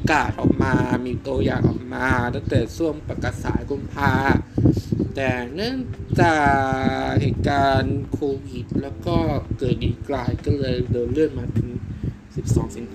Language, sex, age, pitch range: Thai, male, 20-39, 105-135 Hz